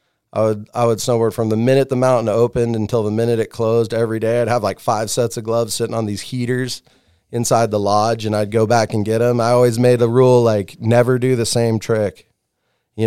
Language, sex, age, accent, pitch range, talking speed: English, male, 30-49, American, 110-120 Hz, 235 wpm